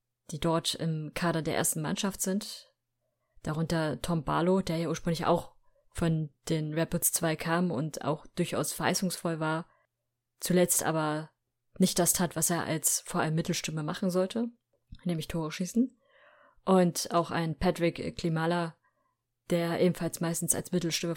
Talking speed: 145 wpm